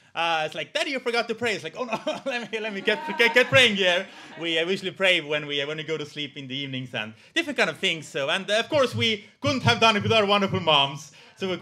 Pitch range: 150-230 Hz